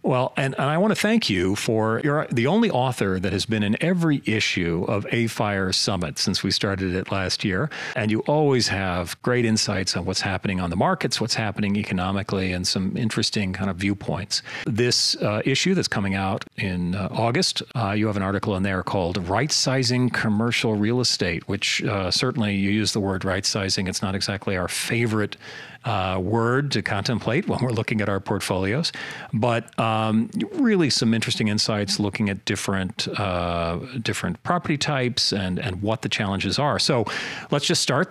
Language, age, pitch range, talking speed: English, 40-59, 100-120 Hz, 185 wpm